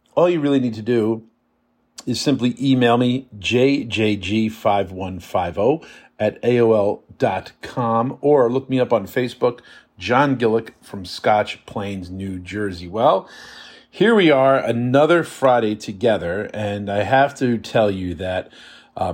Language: English